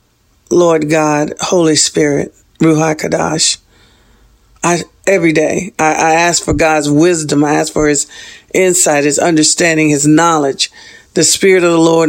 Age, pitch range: 50-69, 155-200 Hz